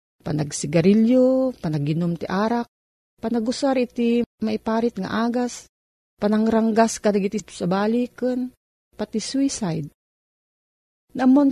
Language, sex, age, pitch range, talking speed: Filipino, female, 40-59, 165-230 Hz, 90 wpm